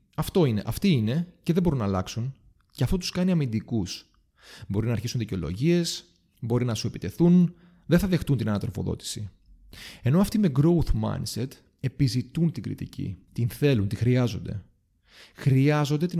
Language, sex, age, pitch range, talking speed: Greek, male, 30-49, 100-150 Hz, 150 wpm